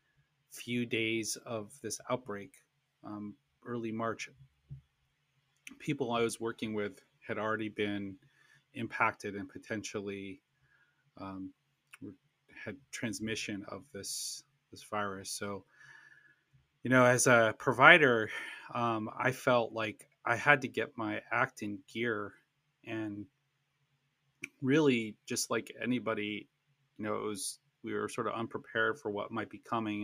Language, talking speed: English, 120 wpm